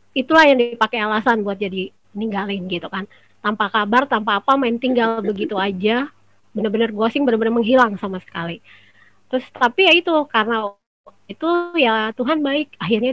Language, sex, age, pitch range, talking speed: Indonesian, female, 20-39, 210-260 Hz, 150 wpm